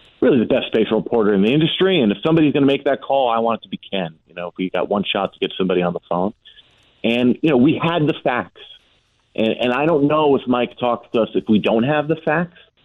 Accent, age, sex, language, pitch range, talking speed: American, 40-59, male, English, 95-140 Hz, 265 wpm